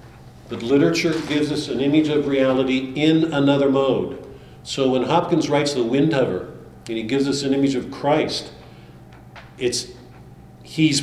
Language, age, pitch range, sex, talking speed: English, 50-69, 115-140 Hz, male, 145 wpm